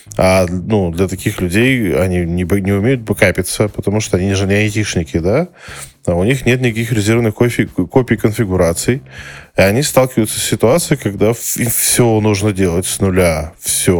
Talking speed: 165 wpm